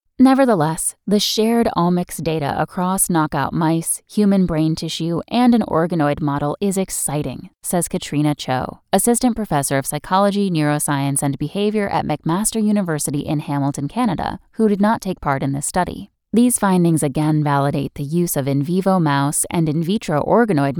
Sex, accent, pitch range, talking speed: female, American, 150-205 Hz, 160 wpm